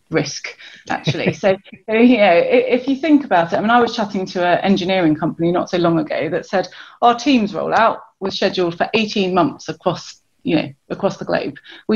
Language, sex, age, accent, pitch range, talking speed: English, female, 30-49, British, 170-210 Hz, 200 wpm